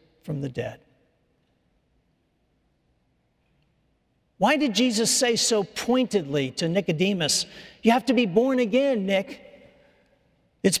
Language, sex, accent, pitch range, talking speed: English, male, American, 175-245 Hz, 105 wpm